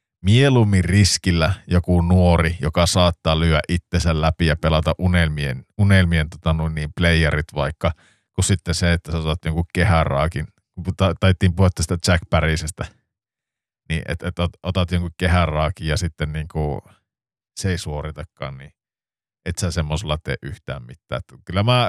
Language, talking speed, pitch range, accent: Finnish, 150 wpm, 80-100 Hz, native